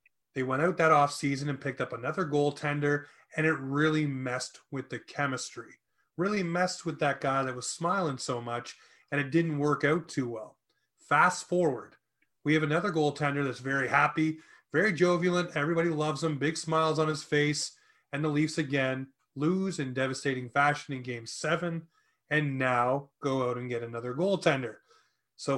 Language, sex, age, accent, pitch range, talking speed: English, male, 30-49, American, 135-160 Hz, 170 wpm